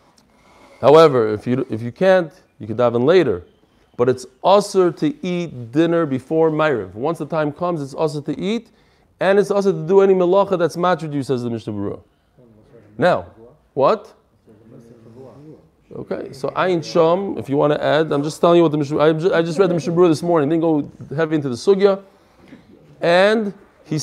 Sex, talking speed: male, 185 wpm